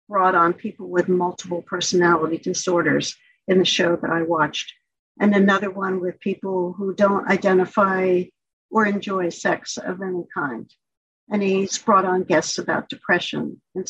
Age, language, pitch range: 60-79, English, 185-230 Hz